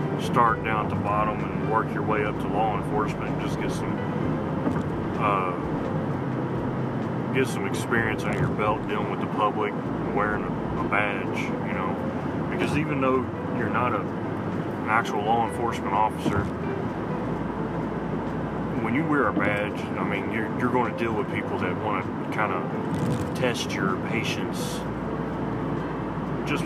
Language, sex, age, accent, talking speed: English, male, 30-49, American, 145 wpm